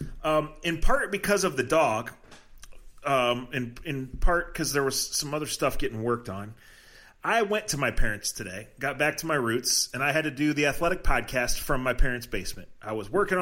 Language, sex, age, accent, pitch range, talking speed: English, male, 30-49, American, 115-150 Hz, 205 wpm